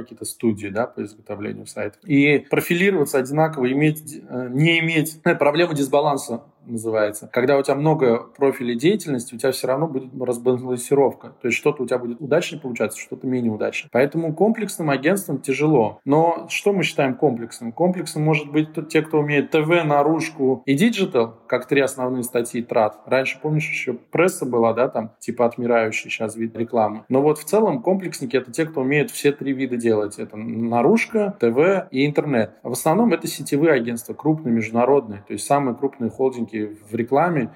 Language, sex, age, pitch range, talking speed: Russian, male, 20-39, 115-150 Hz, 175 wpm